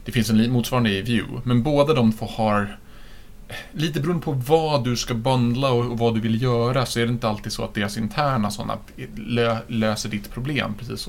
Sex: male